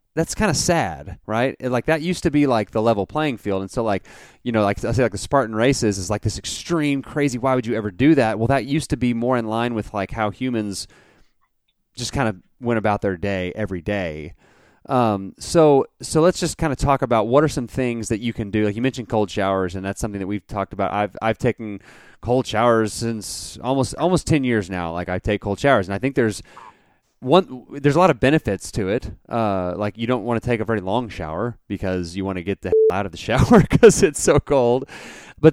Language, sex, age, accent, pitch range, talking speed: English, male, 30-49, American, 100-135 Hz, 240 wpm